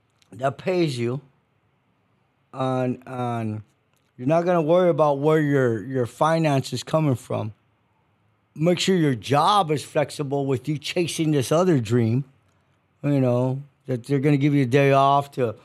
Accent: American